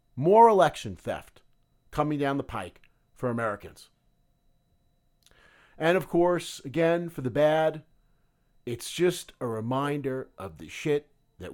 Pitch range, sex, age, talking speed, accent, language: 115-170 Hz, male, 50-69, 125 wpm, American, English